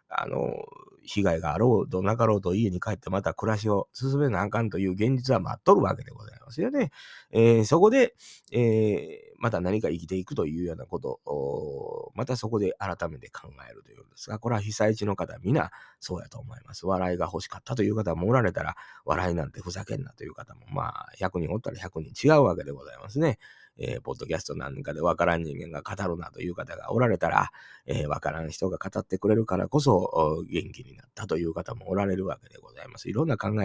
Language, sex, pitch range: Japanese, male, 95-125 Hz